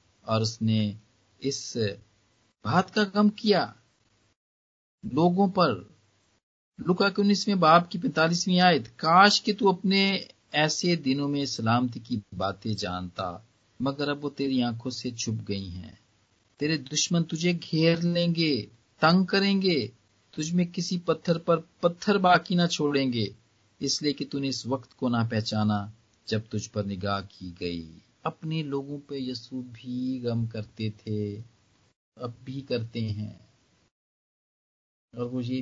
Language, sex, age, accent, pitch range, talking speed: Hindi, male, 50-69, native, 110-170 Hz, 130 wpm